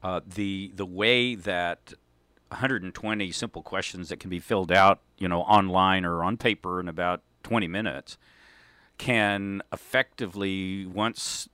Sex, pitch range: male, 90-105 Hz